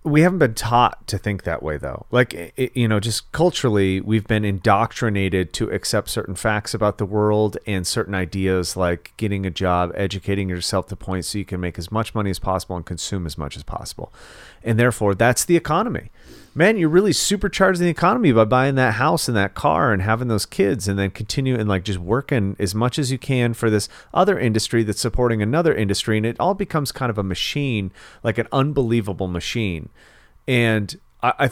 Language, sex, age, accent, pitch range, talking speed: English, male, 30-49, American, 95-125 Hz, 200 wpm